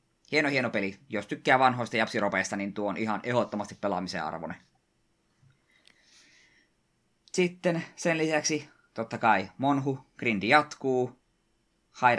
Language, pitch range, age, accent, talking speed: Finnish, 100-125 Hz, 20-39, native, 115 wpm